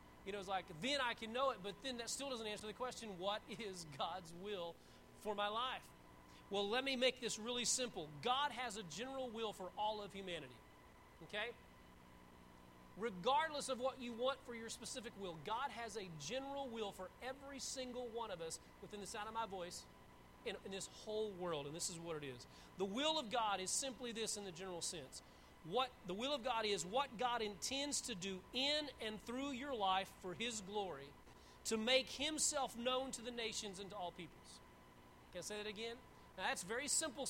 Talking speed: 205 wpm